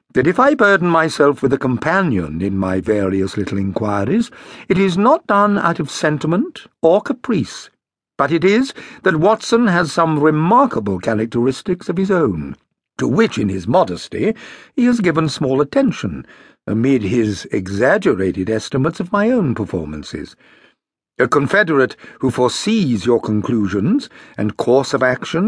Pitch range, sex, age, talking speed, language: 125-200 Hz, male, 60-79, 145 wpm, English